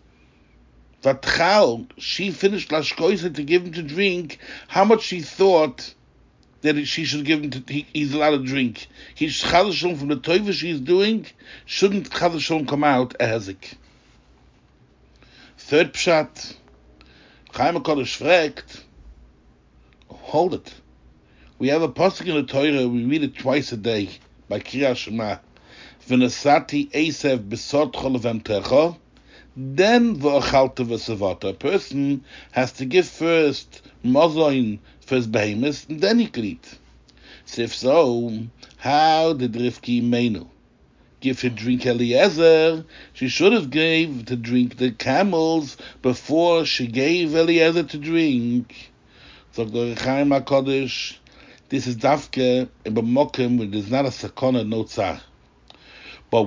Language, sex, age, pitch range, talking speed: English, male, 60-79, 115-160 Hz, 130 wpm